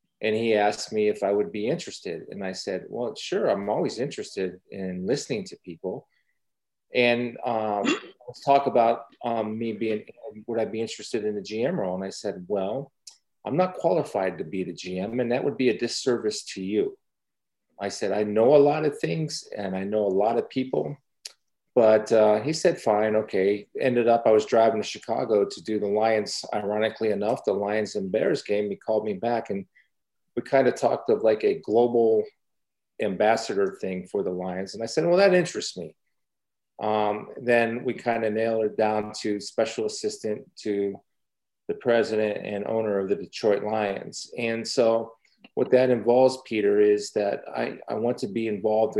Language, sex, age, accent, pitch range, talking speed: English, male, 40-59, American, 105-125 Hz, 190 wpm